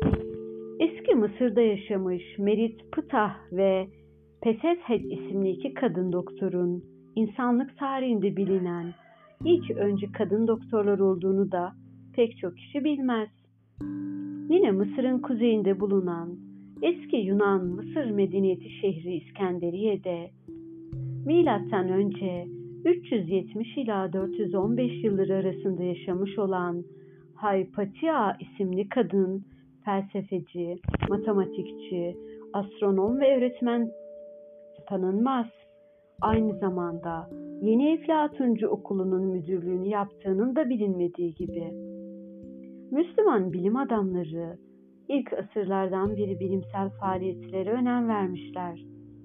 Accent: native